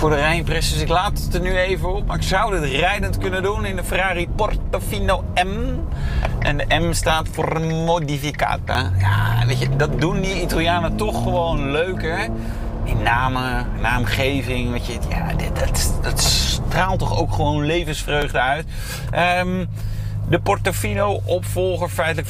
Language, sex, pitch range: Dutch, male, 100-150 Hz